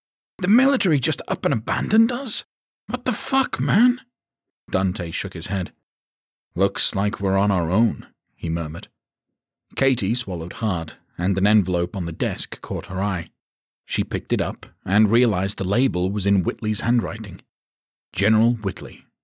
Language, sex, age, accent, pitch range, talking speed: English, male, 40-59, British, 95-120 Hz, 155 wpm